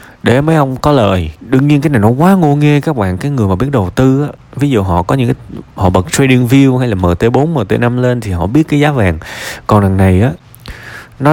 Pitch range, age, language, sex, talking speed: 95-135 Hz, 20-39, Vietnamese, male, 255 wpm